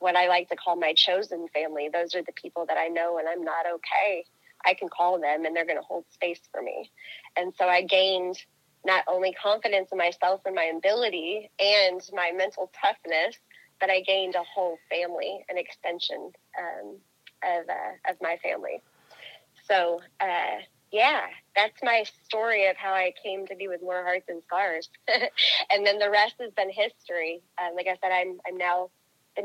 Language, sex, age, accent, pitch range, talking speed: English, female, 30-49, American, 170-190 Hz, 190 wpm